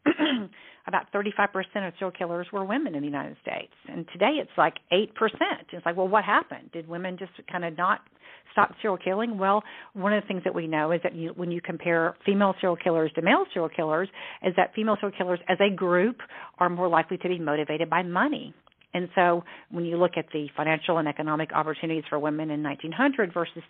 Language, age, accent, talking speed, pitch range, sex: English, 50-69, American, 210 wpm, 165-205 Hz, female